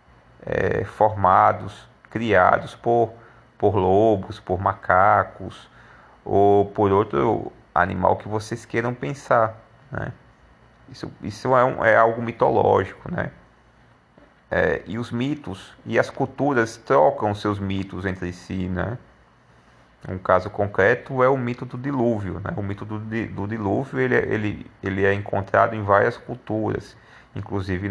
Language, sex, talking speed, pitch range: Portuguese, male, 125 wpm, 95-125 Hz